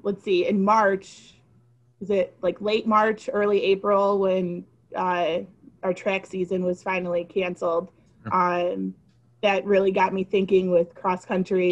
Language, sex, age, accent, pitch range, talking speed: English, female, 20-39, American, 180-200 Hz, 145 wpm